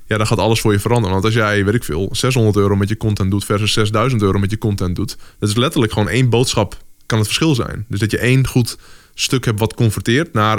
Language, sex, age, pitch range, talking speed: Dutch, male, 20-39, 100-115 Hz, 260 wpm